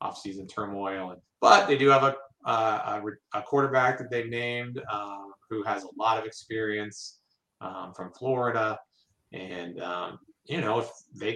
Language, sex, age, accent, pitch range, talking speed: English, male, 30-49, American, 95-120 Hz, 160 wpm